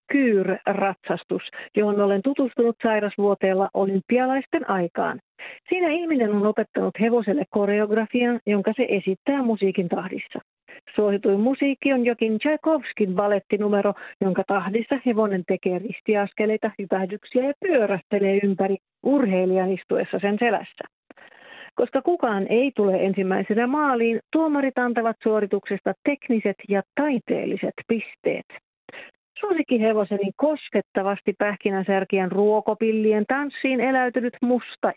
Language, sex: Finnish, female